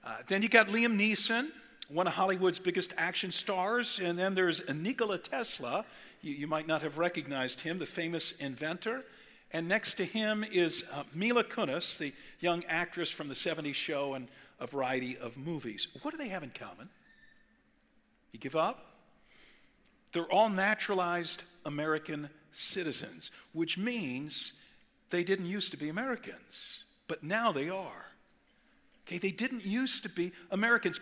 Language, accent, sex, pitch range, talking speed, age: English, American, male, 160-225 Hz, 155 wpm, 50-69